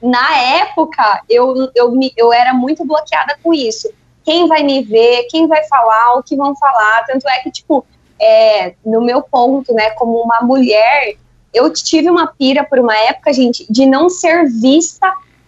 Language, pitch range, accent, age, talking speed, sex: Portuguese, 240-315 Hz, Brazilian, 20-39, 165 wpm, female